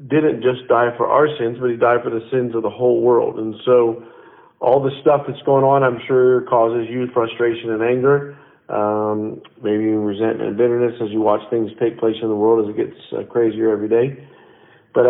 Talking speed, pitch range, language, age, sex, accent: 215 wpm, 115-140 Hz, English, 50-69, male, American